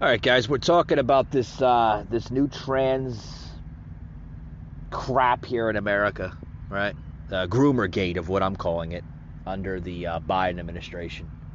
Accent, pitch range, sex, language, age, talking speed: American, 85-130 Hz, male, English, 30-49, 150 wpm